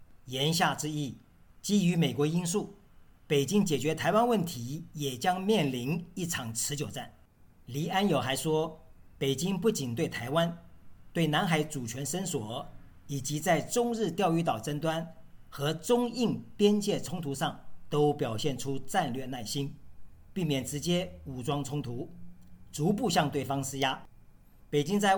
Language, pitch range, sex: Chinese, 135-180 Hz, male